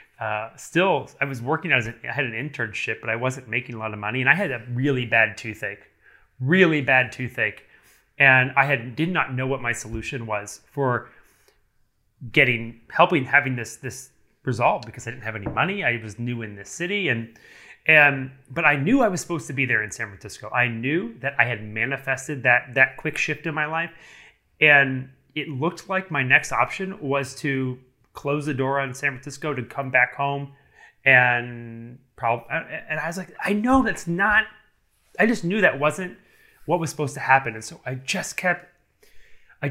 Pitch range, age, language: 120-155 Hz, 30-49, English